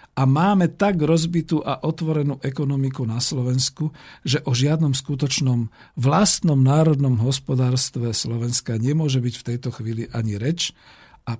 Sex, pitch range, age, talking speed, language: male, 120-150 Hz, 50-69, 130 wpm, Slovak